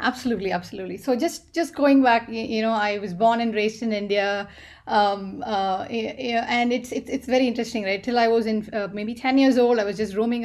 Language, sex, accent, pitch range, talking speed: English, female, Indian, 220-265 Hz, 220 wpm